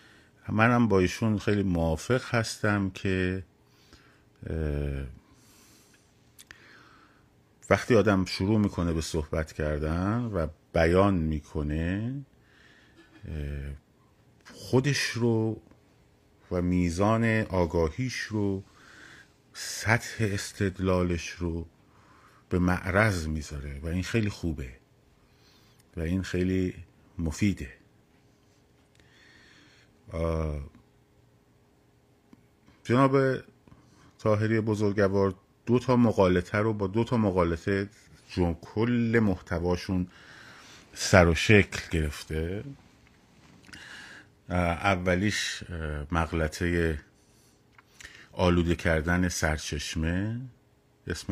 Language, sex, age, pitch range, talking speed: Persian, male, 50-69, 80-105 Hz, 70 wpm